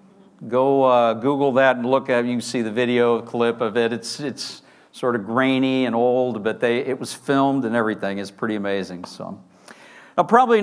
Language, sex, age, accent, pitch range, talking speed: English, male, 50-69, American, 125-155 Hz, 205 wpm